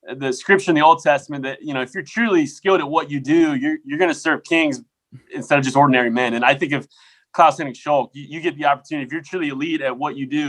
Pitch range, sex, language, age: 130-180 Hz, male, English, 20-39